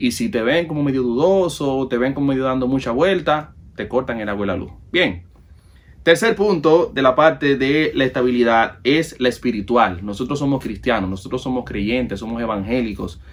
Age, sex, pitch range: 30-49, male, 100-135 Hz